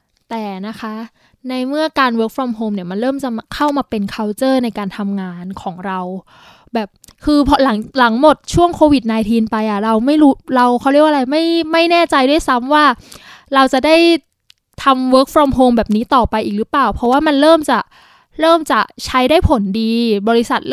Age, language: 20-39, Thai